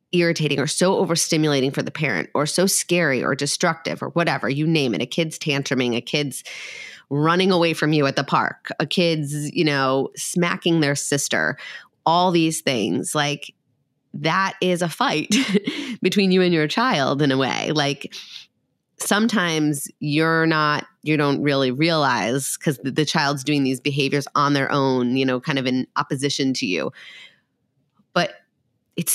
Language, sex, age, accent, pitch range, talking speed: English, female, 30-49, American, 140-165 Hz, 160 wpm